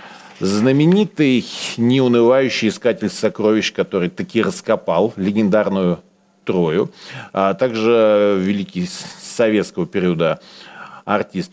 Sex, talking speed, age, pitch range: male, 80 wpm, 40-59, 100-140 Hz